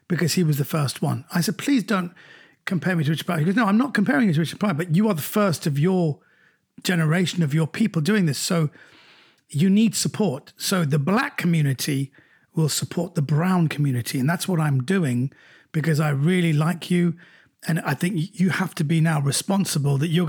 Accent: British